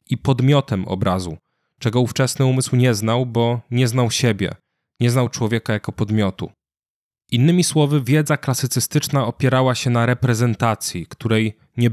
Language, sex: Polish, male